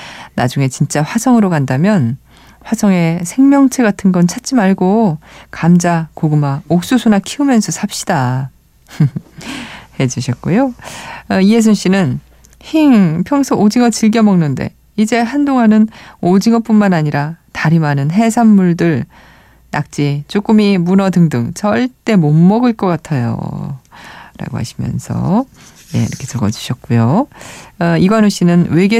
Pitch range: 145-210 Hz